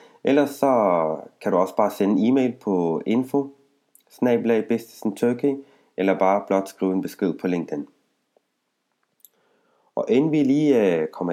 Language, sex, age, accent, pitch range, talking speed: Danish, male, 30-49, native, 95-130 Hz, 130 wpm